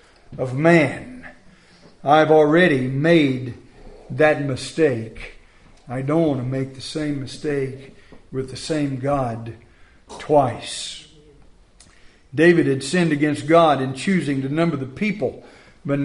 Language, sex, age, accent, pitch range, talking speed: English, male, 50-69, American, 140-210 Hz, 120 wpm